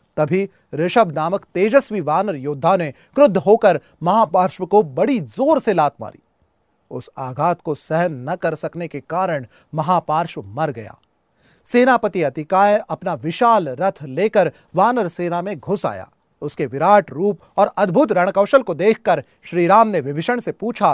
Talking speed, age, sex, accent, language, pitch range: 150 wpm, 30-49, male, native, Hindi, 150-210 Hz